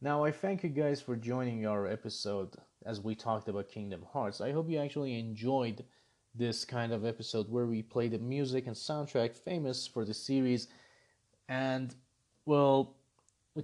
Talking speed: 165 wpm